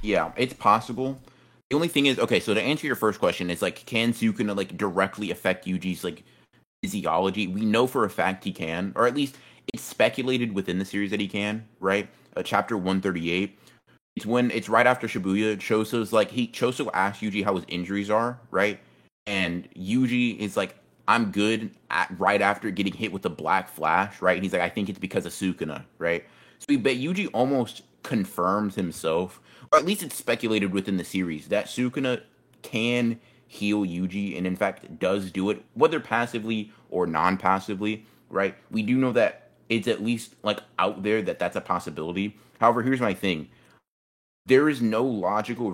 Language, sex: English, male